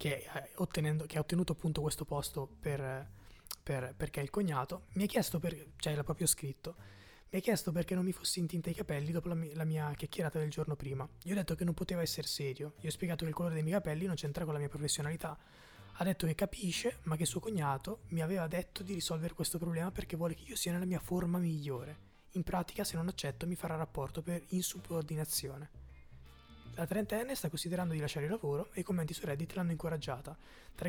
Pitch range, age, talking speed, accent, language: 145-180 Hz, 20-39, 210 wpm, native, Italian